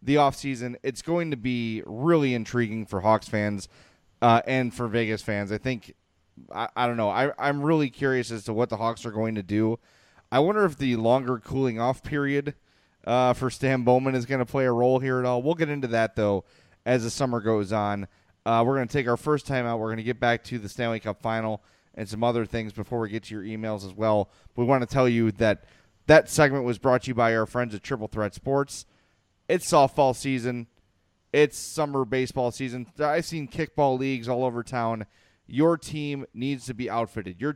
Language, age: English, 30-49